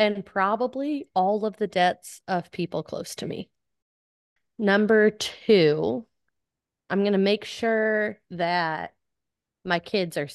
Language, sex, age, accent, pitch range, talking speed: English, female, 20-39, American, 165-200 Hz, 130 wpm